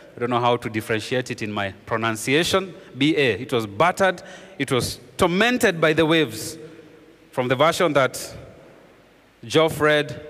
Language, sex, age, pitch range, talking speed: English, male, 30-49, 130-185 Hz, 150 wpm